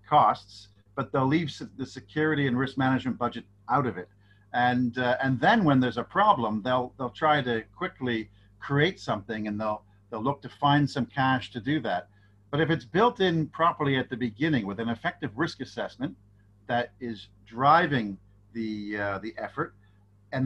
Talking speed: 180 wpm